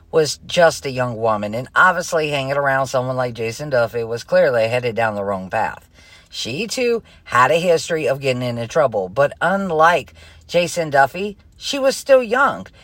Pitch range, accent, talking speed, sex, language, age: 125-190 Hz, American, 175 wpm, female, English, 50-69